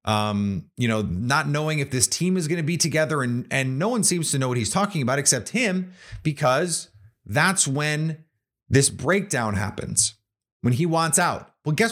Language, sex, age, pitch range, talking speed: English, male, 30-49, 115-170 Hz, 190 wpm